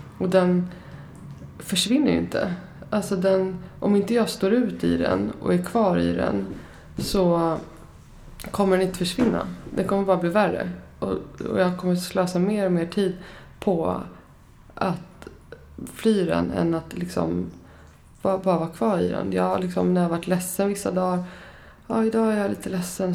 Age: 20-39